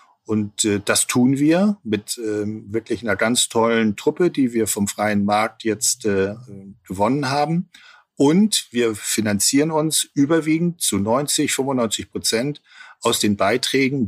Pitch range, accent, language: 110-135 Hz, German, German